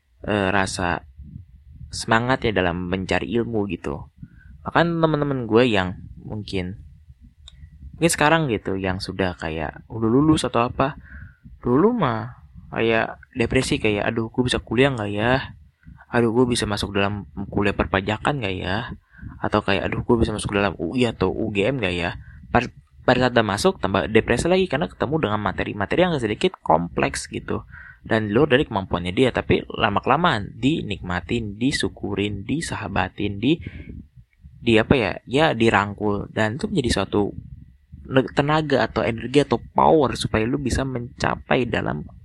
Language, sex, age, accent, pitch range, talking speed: Indonesian, male, 20-39, native, 90-125 Hz, 140 wpm